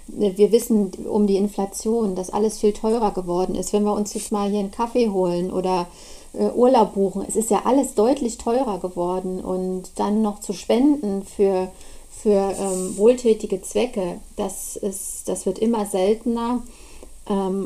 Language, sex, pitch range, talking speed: German, female, 195-220 Hz, 160 wpm